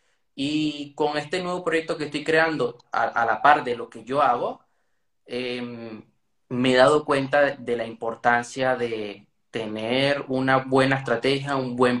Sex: male